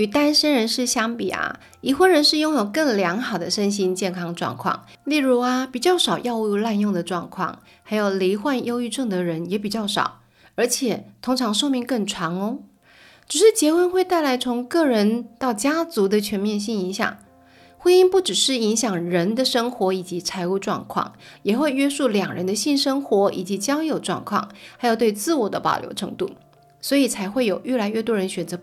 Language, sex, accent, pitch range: Chinese, female, native, 195-275 Hz